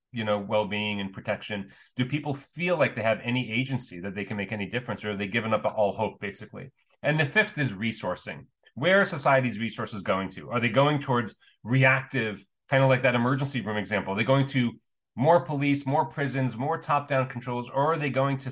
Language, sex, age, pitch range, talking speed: English, male, 30-49, 110-145 Hz, 215 wpm